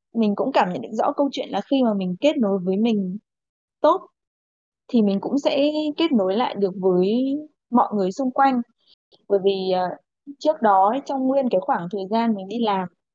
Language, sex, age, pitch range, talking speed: Vietnamese, female, 20-39, 195-255 Hz, 200 wpm